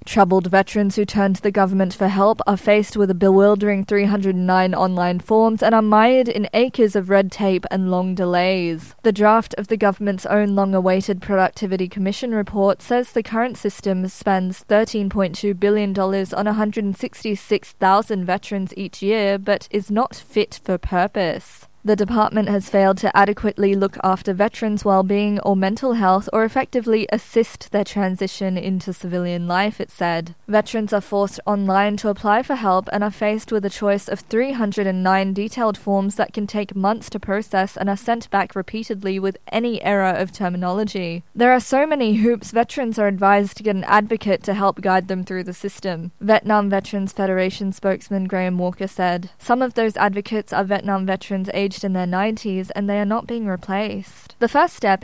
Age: 20-39